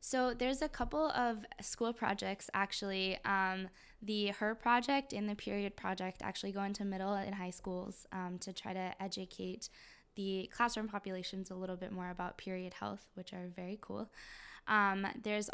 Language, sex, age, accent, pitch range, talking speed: English, female, 10-29, American, 185-210 Hz, 170 wpm